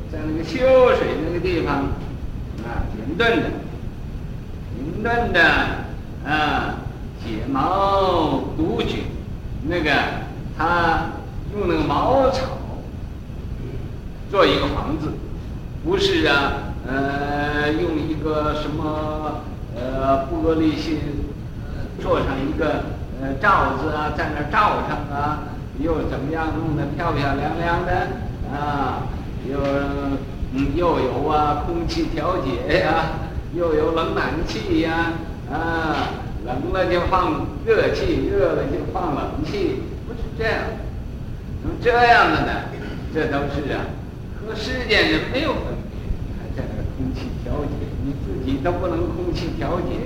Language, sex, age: Chinese, male, 50-69